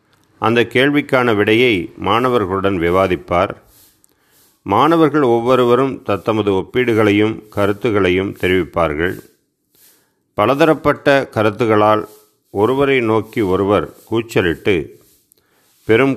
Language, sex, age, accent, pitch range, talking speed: Tamil, male, 40-59, native, 100-120 Hz, 65 wpm